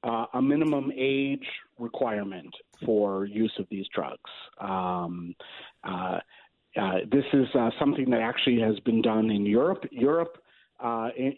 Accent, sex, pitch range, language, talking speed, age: American, male, 110-140 Hz, English, 140 wpm, 50-69